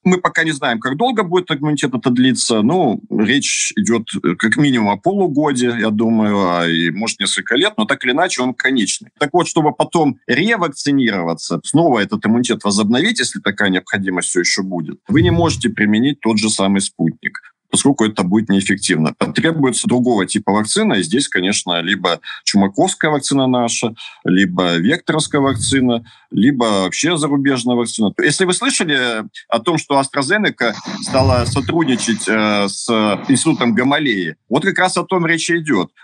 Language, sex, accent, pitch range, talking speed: Russian, male, native, 105-150 Hz, 160 wpm